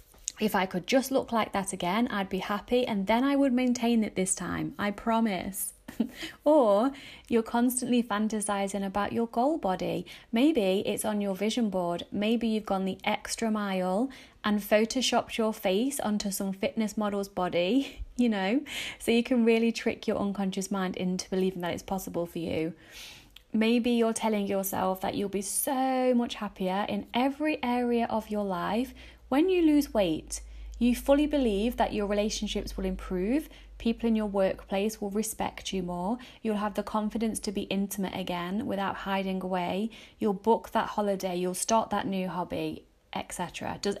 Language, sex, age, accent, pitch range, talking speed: English, female, 30-49, British, 190-235 Hz, 170 wpm